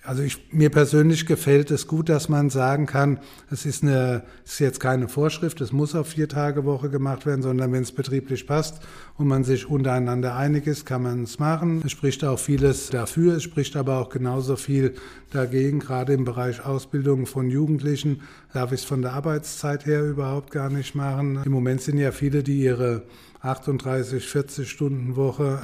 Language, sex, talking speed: German, male, 185 wpm